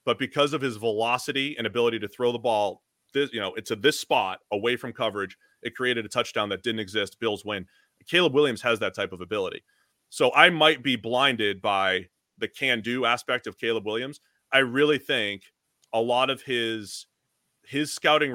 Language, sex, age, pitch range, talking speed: English, male, 30-49, 115-150 Hz, 190 wpm